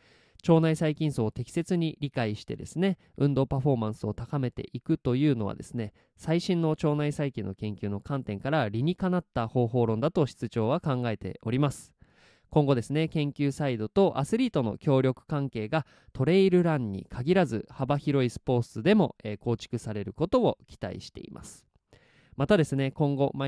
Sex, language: male, Japanese